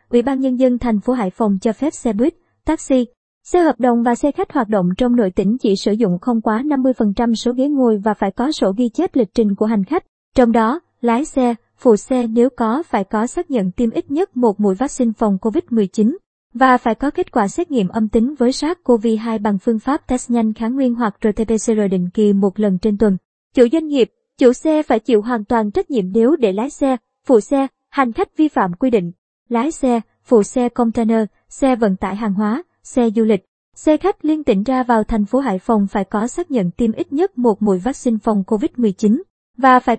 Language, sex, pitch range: Vietnamese, male, 220-265 Hz